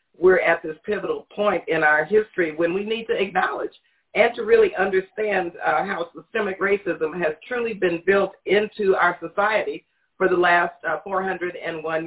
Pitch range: 180-225 Hz